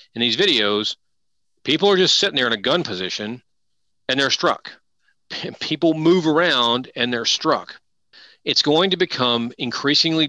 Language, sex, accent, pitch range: English, male, American, 110-130 Hz